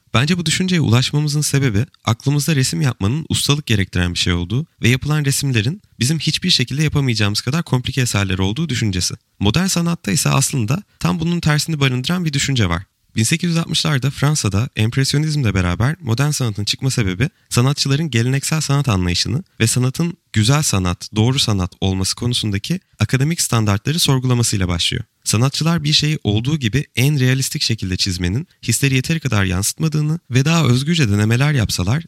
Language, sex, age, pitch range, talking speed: Turkish, male, 30-49, 105-150 Hz, 145 wpm